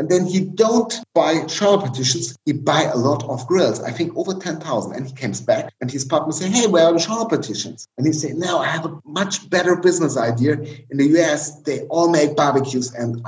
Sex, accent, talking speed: male, German, 225 wpm